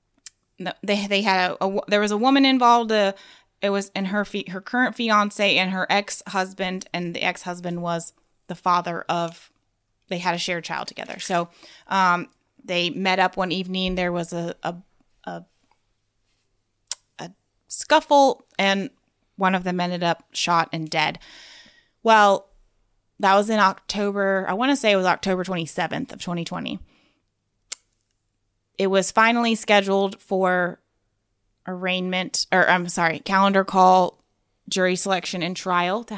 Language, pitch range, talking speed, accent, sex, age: English, 175-200 Hz, 150 wpm, American, female, 20-39